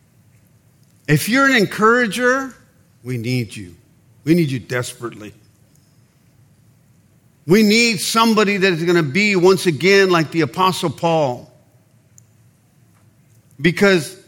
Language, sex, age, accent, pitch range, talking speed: English, male, 50-69, American, 135-205 Hz, 110 wpm